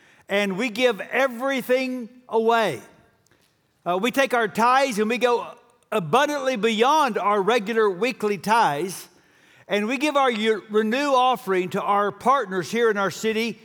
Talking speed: 140 wpm